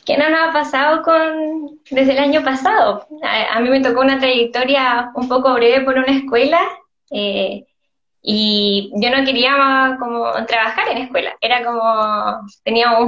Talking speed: 165 wpm